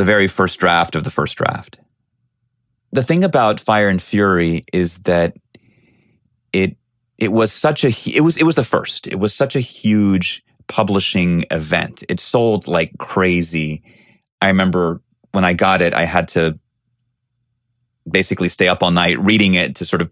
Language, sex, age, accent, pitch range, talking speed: English, male, 30-49, American, 90-120 Hz, 170 wpm